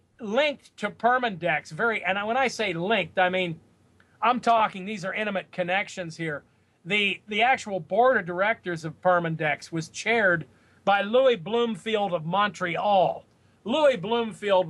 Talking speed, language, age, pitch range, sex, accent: 145 wpm, English, 40-59, 160-205 Hz, male, American